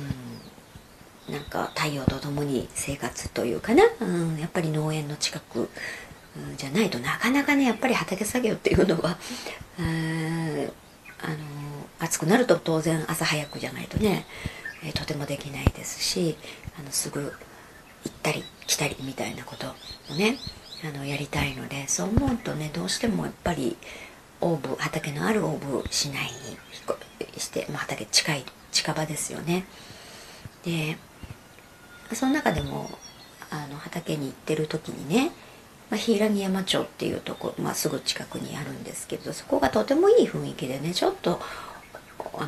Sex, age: male, 40-59